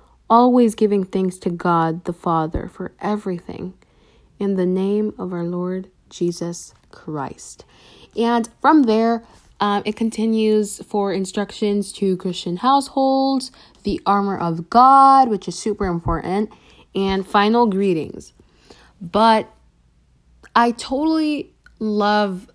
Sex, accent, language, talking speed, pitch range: female, American, English, 115 wpm, 185-225 Hz